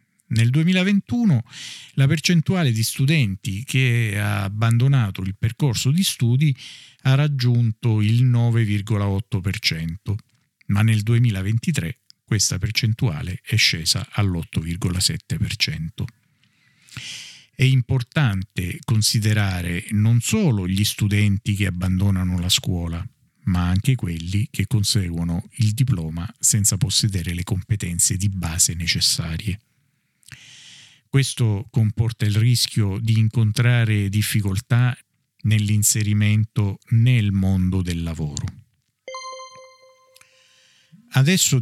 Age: 50-69